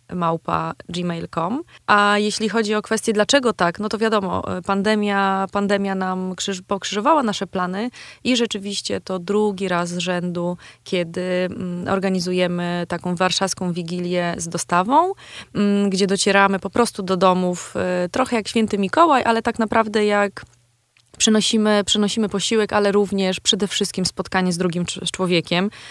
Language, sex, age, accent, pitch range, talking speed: Polish, female, 20-39, native, 180-205 Hz, 125 wpm